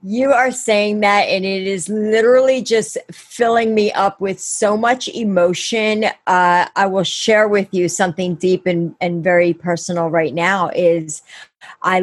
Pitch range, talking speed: 170-205 Hz, 160 wpm